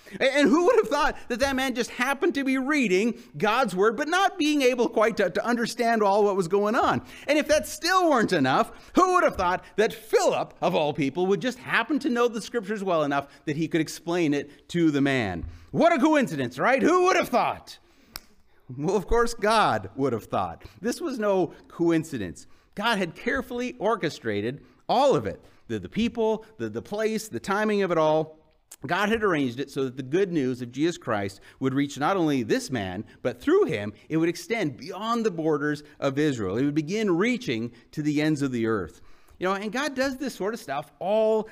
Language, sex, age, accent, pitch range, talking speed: English, male, 30-49, American, 140-230 Hz, 210 wpm